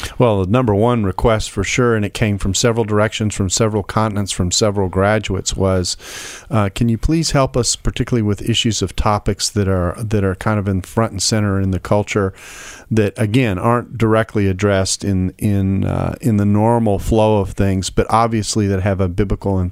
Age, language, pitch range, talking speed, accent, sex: 40-59, English, 95-115 Hz, 200 wpm, American, male